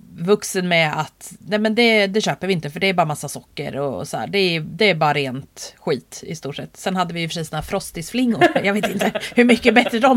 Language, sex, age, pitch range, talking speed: Swedish, female, 30-49, 165-230 Hz, 255 wpm